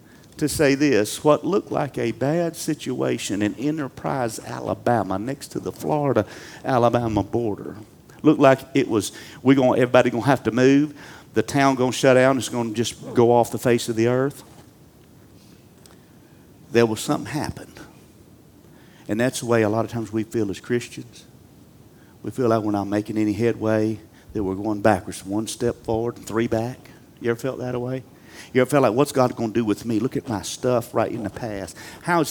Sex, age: male, 50-69